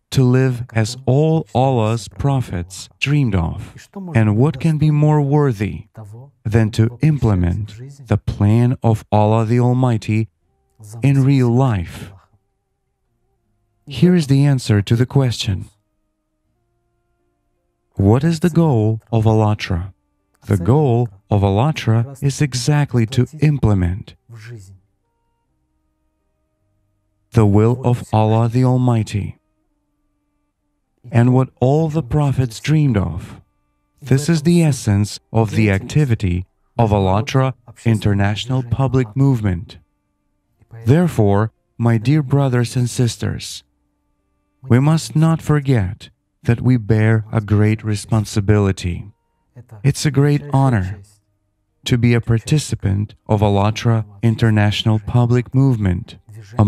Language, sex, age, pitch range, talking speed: English, male, 40-59, 105-130 Hz, 110 wpm